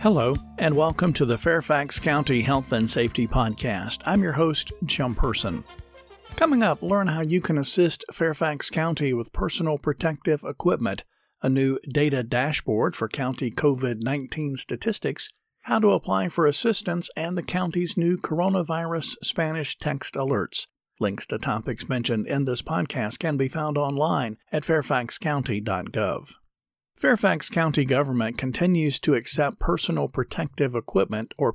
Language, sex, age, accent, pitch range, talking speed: English, male, 50-69, American, 125-160 Hz, 140 wpm